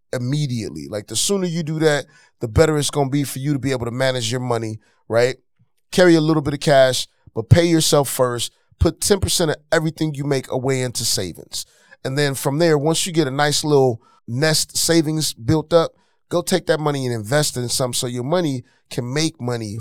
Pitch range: 120-155 Hz